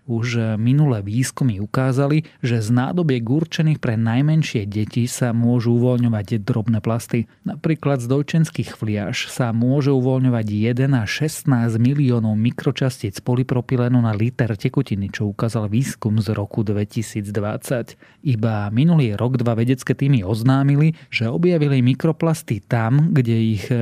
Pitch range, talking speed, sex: 115-135 Hz, 130 wpm, male